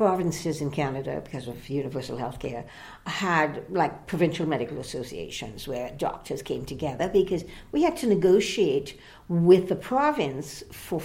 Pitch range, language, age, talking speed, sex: 160-215 Hz, English, 60-79, 140 wpm, female